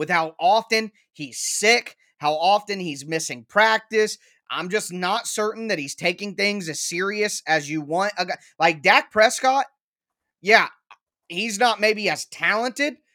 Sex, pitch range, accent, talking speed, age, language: male, 165-210 Hz, American, 145 wpm, 20-39, English